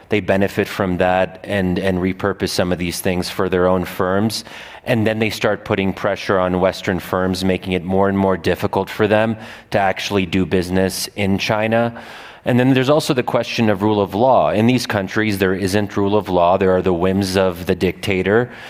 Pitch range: 95-115 Hz